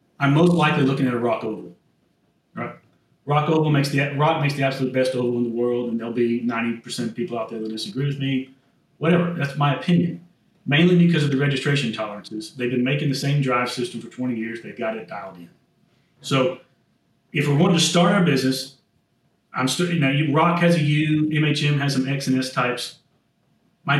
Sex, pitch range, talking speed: male, 125-170 Hz, 210 wpm